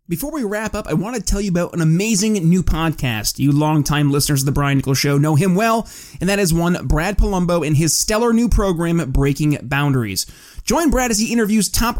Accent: American